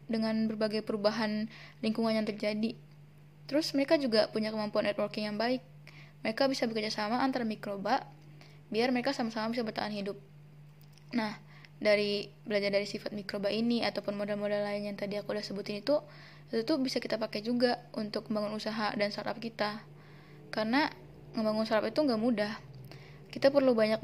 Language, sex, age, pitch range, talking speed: Indonesian, female, 10-29, 155-225 Hz, 155 wpm